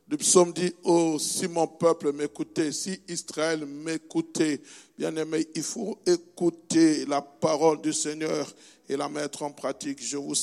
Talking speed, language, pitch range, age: 165 wpm, French, 145-160 Hz, 60-79